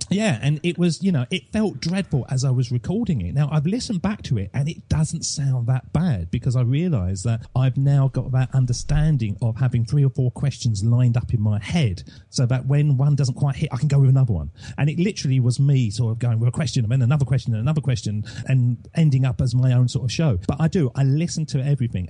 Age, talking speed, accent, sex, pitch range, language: 40-59, 255 wpm, British, male, 115-150 Hz, English